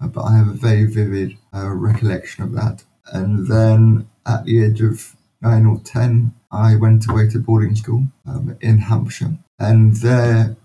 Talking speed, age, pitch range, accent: 170 wpm, 30-49, 110-125 Hz, British